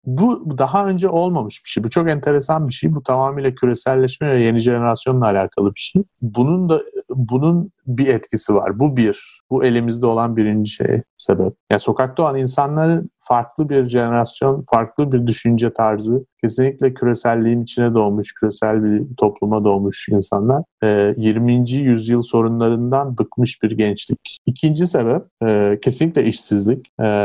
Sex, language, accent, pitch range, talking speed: male, Turkish, native, 105-130 Hz, 145 wpm